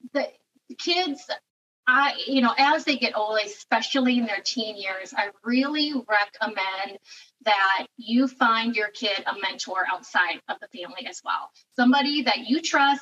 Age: 30-49